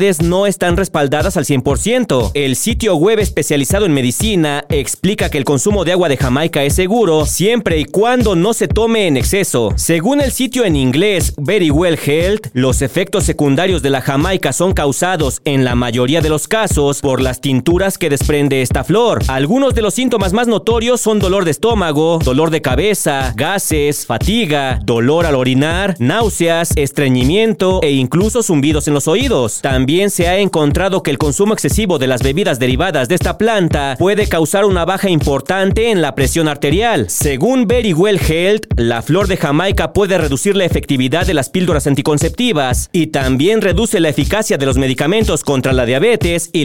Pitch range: 140-195 Hz